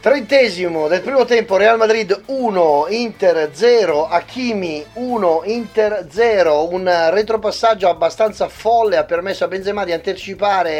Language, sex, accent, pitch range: Italian, male, native, 155-200 Hz